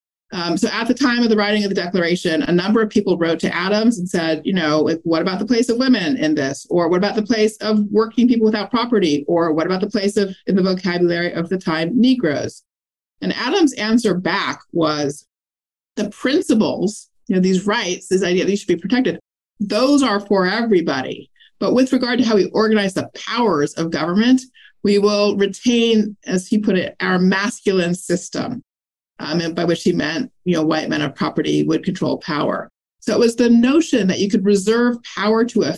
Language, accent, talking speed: English, American, 205 wpm